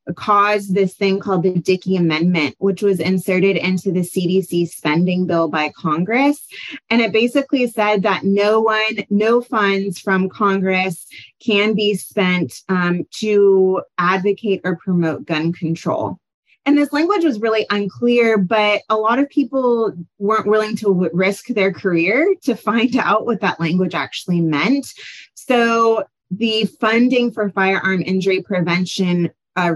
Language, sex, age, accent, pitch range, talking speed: English, female, 20-39, American, 180-225 Hz, 145 wpm